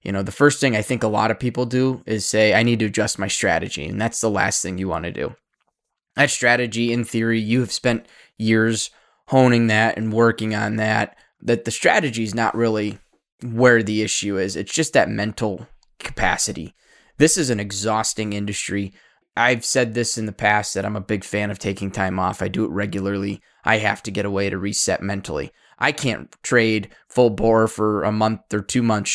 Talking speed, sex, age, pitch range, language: 210 wpm, male, 20-39, 105-125 Hz, English